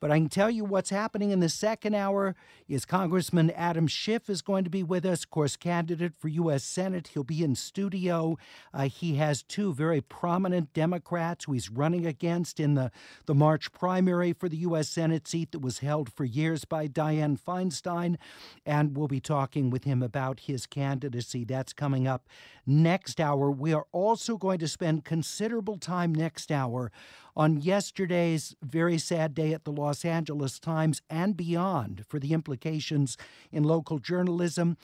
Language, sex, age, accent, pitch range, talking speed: English, male, 50-69, American, 145-175 Hz, 175 wpm